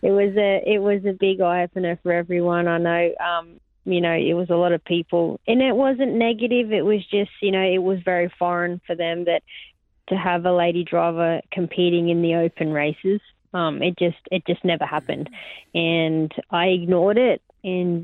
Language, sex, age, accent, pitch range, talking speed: English, female, 20-39, Australian, 170-185 Hz, 200 wpm